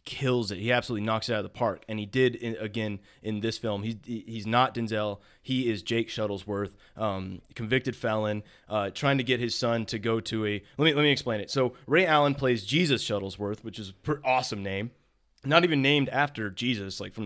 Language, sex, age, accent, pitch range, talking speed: English, male, 30-49, American, 105-135 Hz, 215 wpm